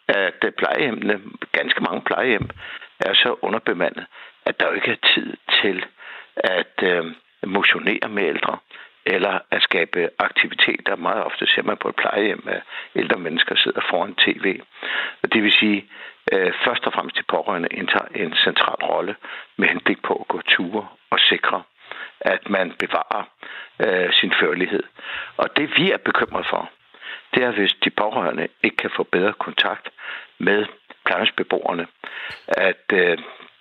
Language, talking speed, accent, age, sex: Danish, 150 wpm, native, 60-79, male